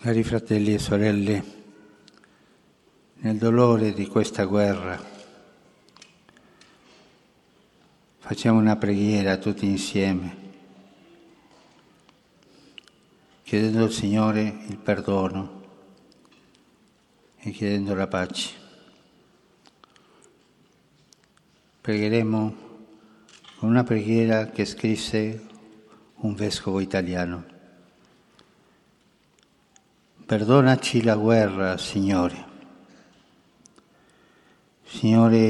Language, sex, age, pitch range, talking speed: Italian, male, 60-79, 100-115 Hz, 65 wpm